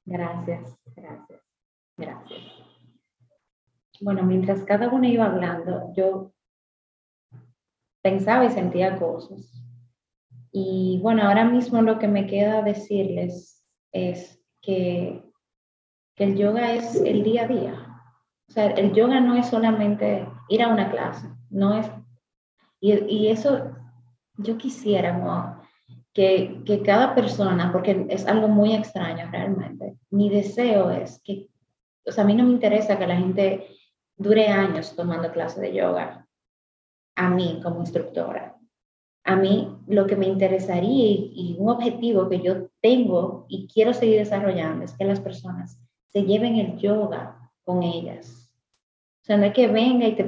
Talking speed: 145 wpm